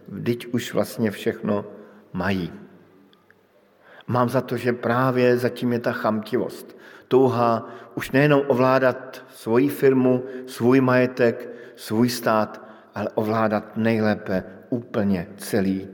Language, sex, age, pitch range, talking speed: Slovak, male, 50-69, 110-140 Hz, 110 wpm